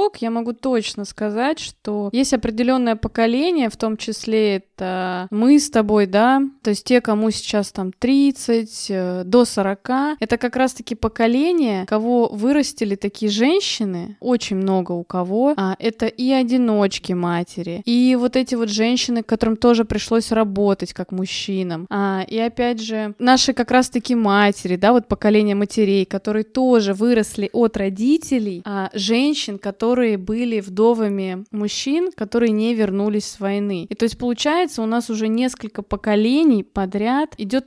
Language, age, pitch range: Russian, 20-39, 205-245 Hz